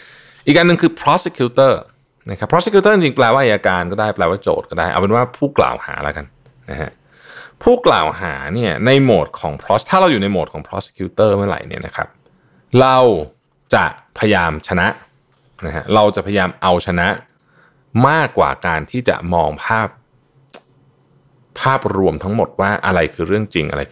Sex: male